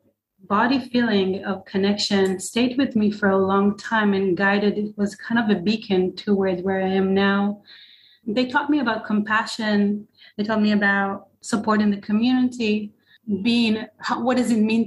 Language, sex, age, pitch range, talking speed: English, female, 30-49, 200-230 Hz, 170 wpm